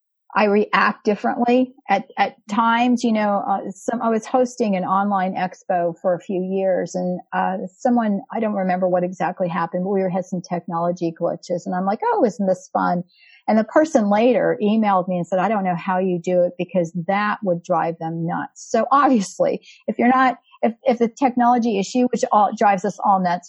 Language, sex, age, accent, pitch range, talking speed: English, female, 40-59, American, 180-240 Hz, 205 wpm